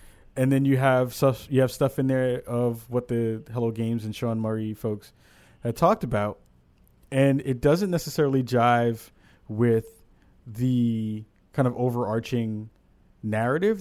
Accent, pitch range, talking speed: American, 105-135 Hz, 135 wpm